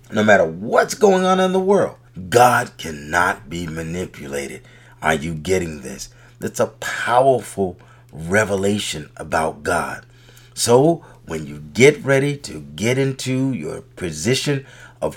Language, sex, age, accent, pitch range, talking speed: English, male, 40-59, American, 105-145 Hz, 130 wpm